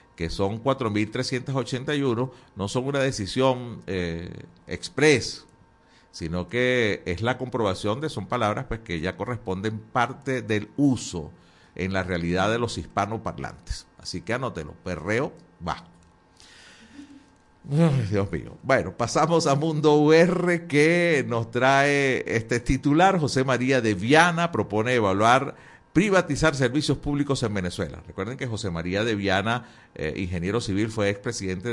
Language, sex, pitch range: Spanish, male, 95-135 Hz